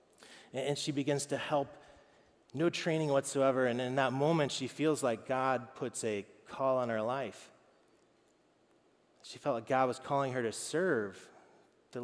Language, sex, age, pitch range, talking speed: English, male, 30-49, 125-160 Hz, 160 wpm